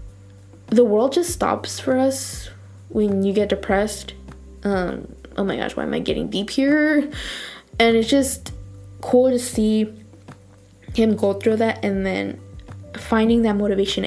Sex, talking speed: female, 150 wpm